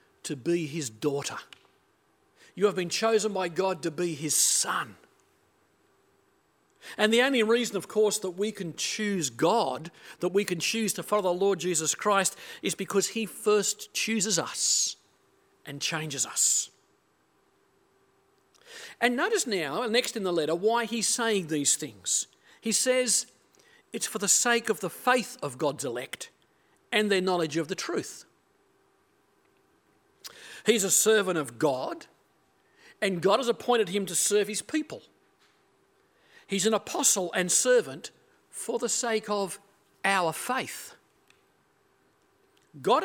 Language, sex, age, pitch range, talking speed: English, male, 50-69, 180-250 Hz, 140 wpm